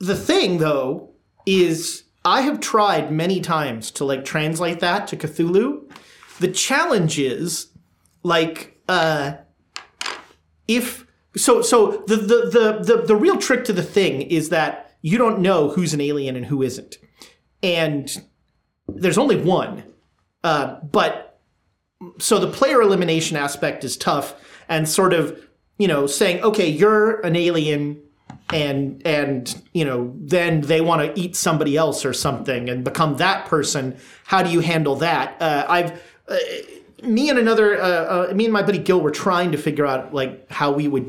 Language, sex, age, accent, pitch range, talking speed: English, male, 30-49, American, 150-205 Hz, 165 wpm